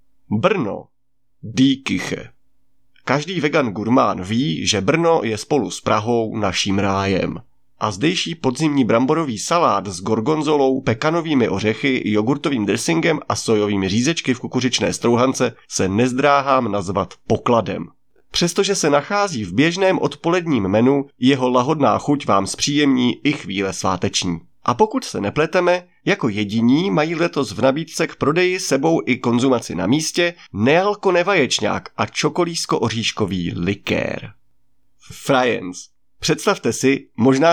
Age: 30-49